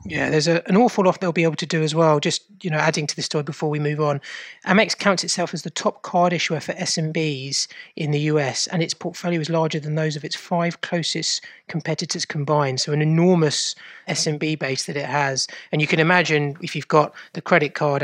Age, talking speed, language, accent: 30-49, 225 wpm, English, British